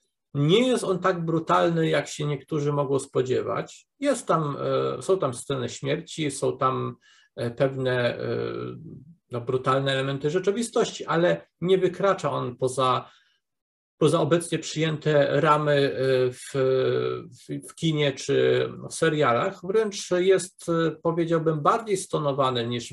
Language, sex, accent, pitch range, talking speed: Polish, male, native, 130-165 Hz, 115 wpm